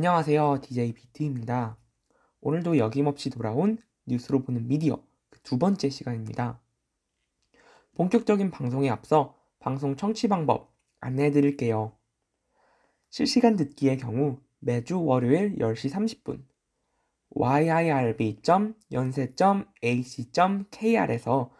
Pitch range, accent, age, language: 125-170 Hz, native, 20-39, Korean